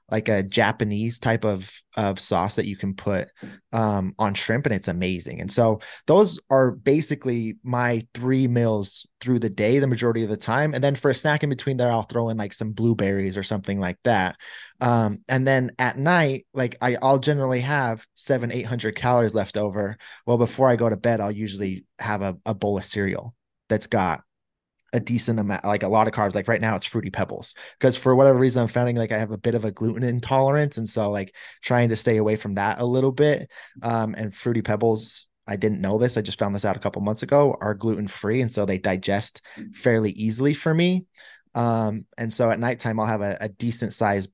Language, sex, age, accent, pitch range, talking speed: English, male, 20-39, American, 100-120 Hz, 220 wpm